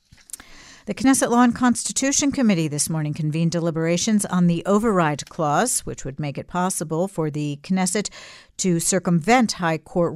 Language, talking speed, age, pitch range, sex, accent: English, 155 wpm, 50-69, 160-225 Hz, female, American